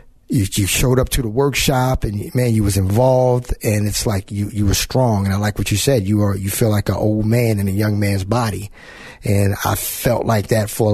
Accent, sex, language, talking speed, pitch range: American, male, English, 245 wpm, 105-125 Hz